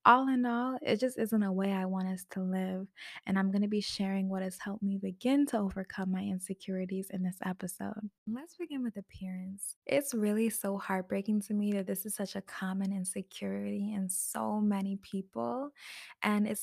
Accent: American